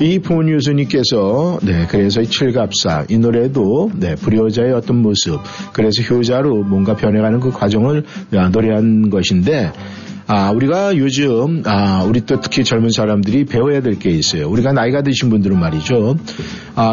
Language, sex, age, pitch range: Korean, male, 50-69, 110-145 Hz